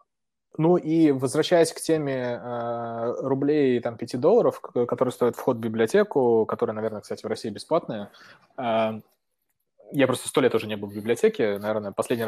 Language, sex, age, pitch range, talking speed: Russian, male, 20-39, 115-155 Hz, 165 wpm